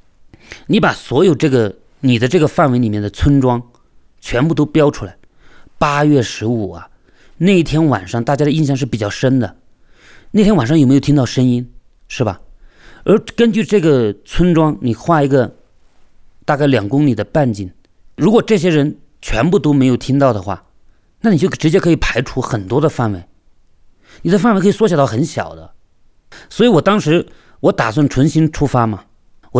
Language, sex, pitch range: Chinese, male, 100-145 Hz